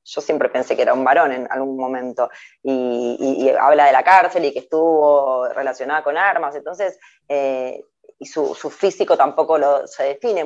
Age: 20-39